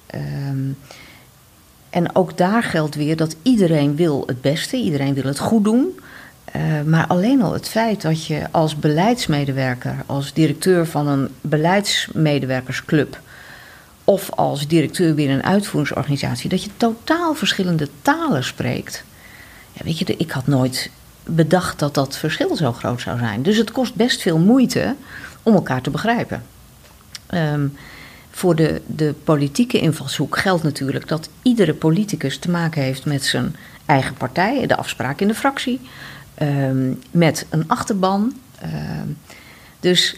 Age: 50-69